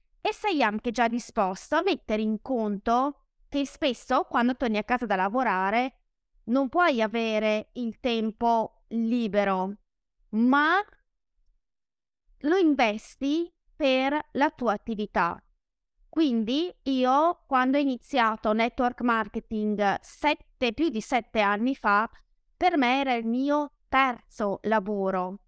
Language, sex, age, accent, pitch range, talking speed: Italian, female, 20-39, native, 215-270 Hz, 120 wpm